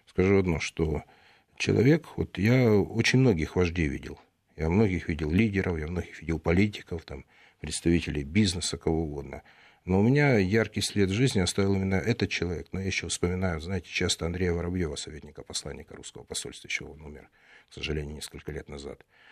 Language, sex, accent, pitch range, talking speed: Russian, male, native, 85-100 Hz, 165 wpm